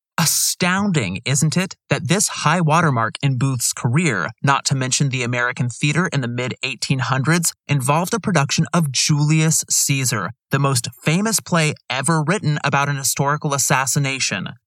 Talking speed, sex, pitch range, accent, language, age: 145 wpm, male, 125-165 Hz, American, English, 30-49